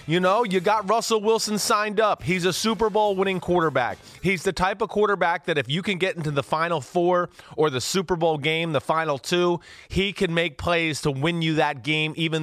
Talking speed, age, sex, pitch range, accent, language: 220 wpm, 30-49, male, 145-180 Hz, American, English